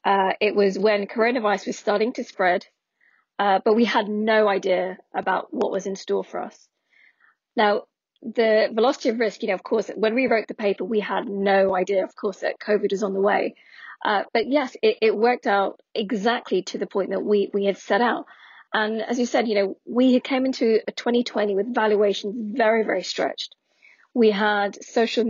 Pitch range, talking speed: 200-240 Hz, 200 wpm